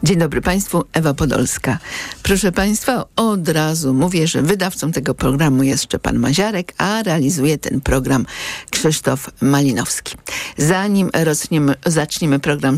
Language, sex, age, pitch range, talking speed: Polish, female, 50-69, 140-180 Hz, 120 wpm